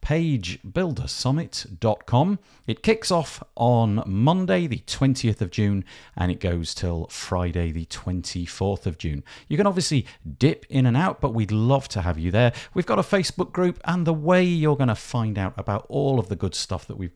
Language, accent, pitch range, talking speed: English, British, 90-145 Hz, 190 wpm